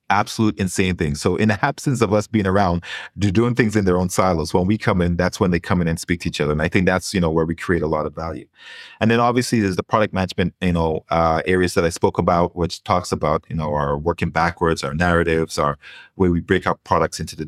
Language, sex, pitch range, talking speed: English, male, 80-95 Hz, 270 wpm